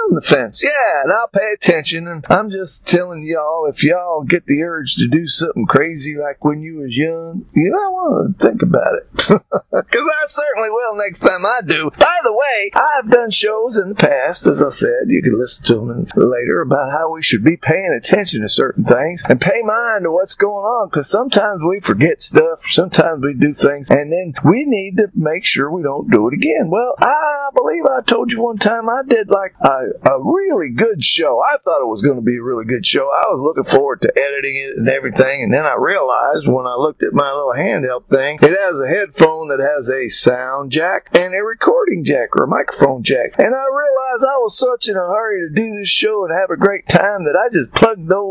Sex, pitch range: male, 160-250 Hz